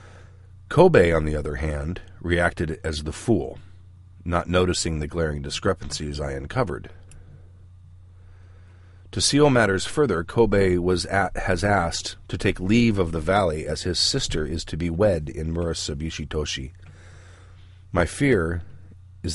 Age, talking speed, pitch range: 40-59, 135 wpm, 80-95 Hz